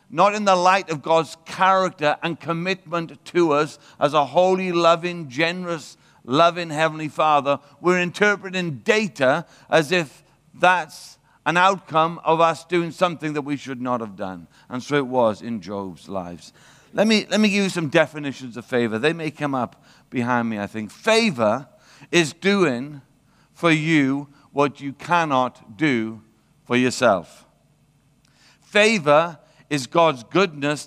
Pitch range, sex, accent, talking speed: 135-170 Hz, male, British, 150 wpm